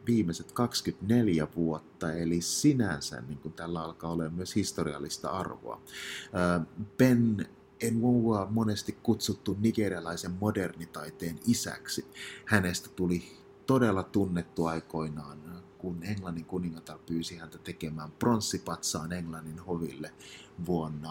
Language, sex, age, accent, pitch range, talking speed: Finnish, male, 30-49, native, 80-105 Hz, 100 wpm